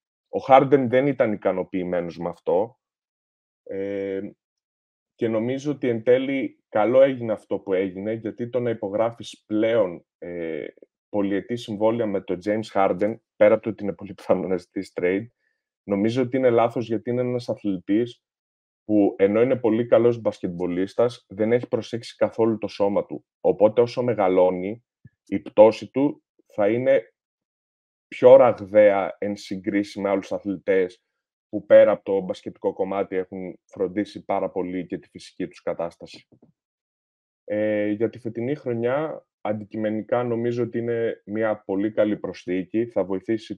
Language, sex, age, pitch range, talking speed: Greek, male, 30-49, 95-120 Hz, 140 wpm